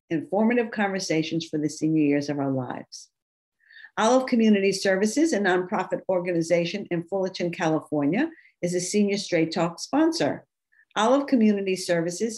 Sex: female